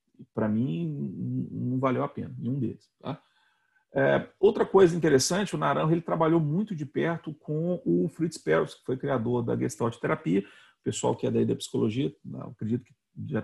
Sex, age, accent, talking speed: male, 40-59, Brazilian, 175 wpm